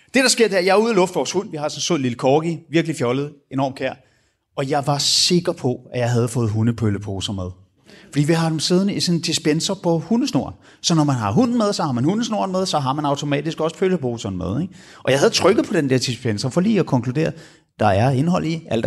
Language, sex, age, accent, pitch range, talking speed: Danish, male, 30-49, native, 125-200 Hz, 260 wpm